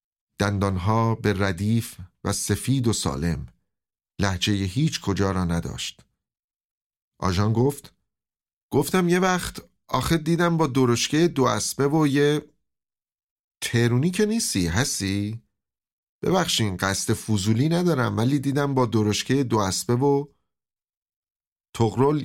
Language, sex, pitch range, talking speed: Persian, male, 100-140 Hz, 115 wpm